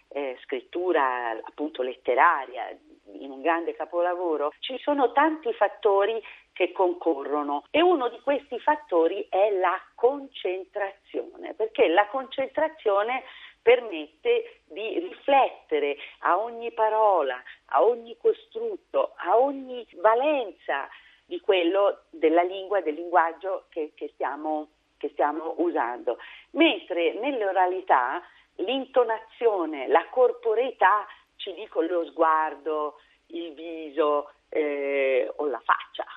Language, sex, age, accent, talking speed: Italian, female, 40-59, native, 105 wpm